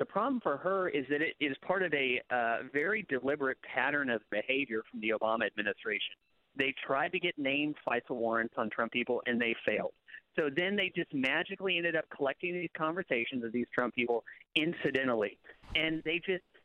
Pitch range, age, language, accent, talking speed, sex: 130-175 Hz, 40-59, English, American, 185 wpm, male